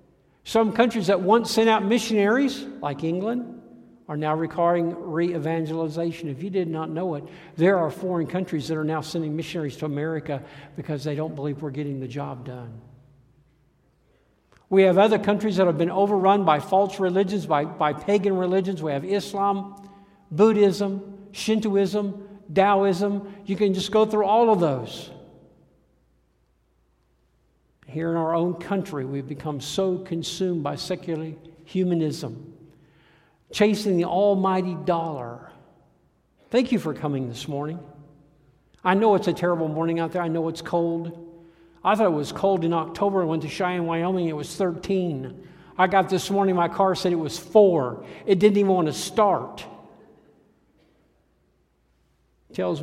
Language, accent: English, American